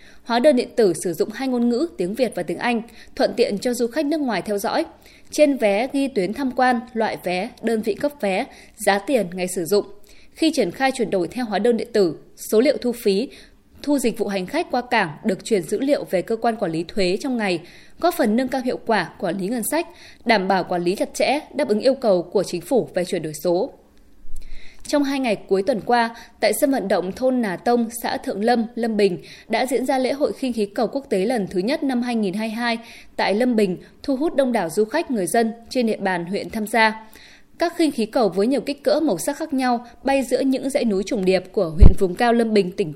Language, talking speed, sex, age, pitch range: Vietnamese, 245 wpm, female, 20-39, 200-260 Hz